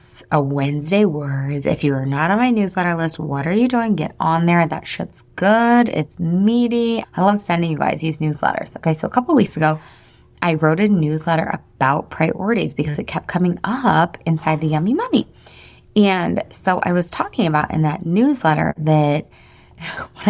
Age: 20-39